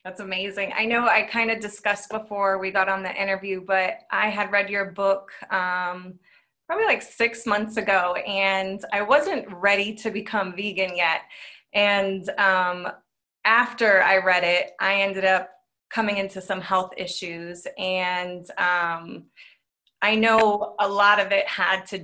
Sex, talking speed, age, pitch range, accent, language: female, 160 wpm, 20-39, 185-220 Hz, American, English